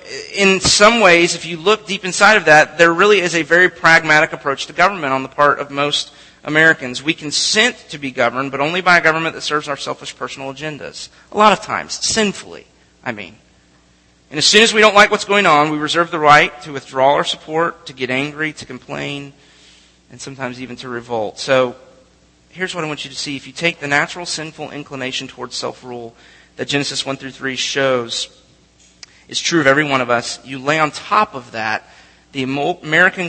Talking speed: 205 wpm